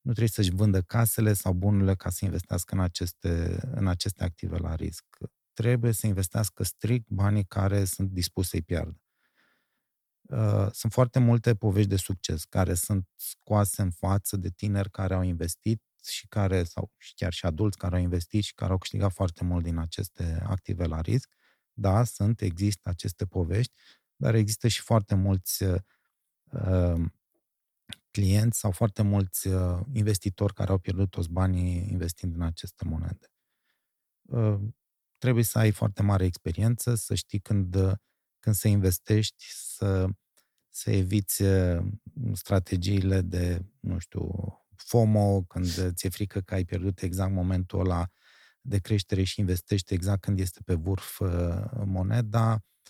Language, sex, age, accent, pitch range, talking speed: Romanian, male, 20-39, native, 90-105 Hz, 140 wpm